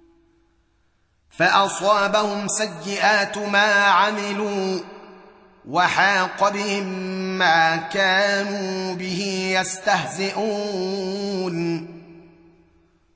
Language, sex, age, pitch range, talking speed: Arabic, male, 30-49, 180-200 Hz, 45 wpm